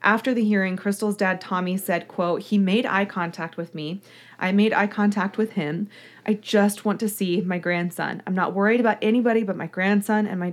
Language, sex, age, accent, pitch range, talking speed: English, female, 20-39, American, 185-215 Hz, 210 wpm